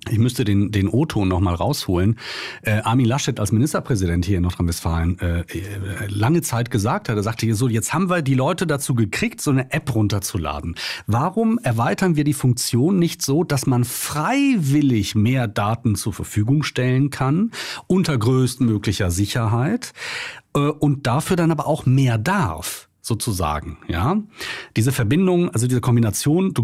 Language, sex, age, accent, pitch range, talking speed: German, male, 40-59, German, 105-140 Hz, 160 wpm